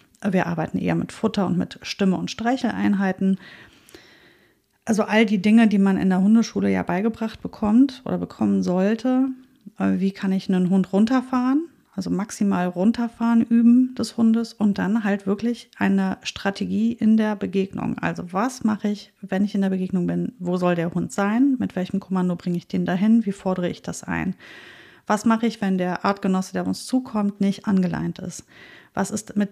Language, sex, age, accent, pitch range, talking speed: German, female, 30-49, German, 185-225 Hz, 180 wpm